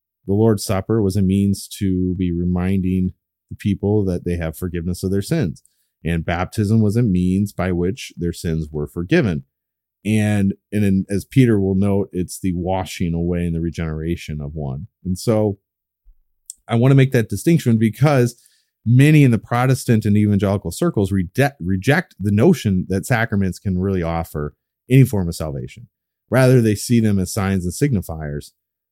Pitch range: 85-110 Hz